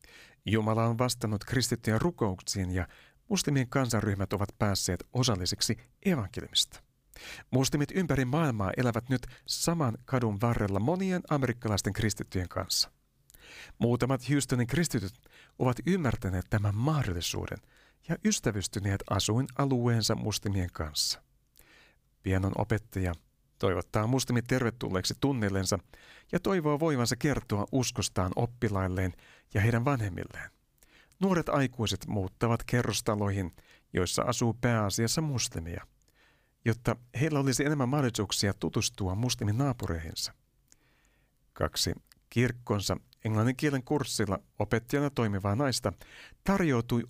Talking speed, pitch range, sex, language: 95 wpm, 100-130 Hz, male, Finnish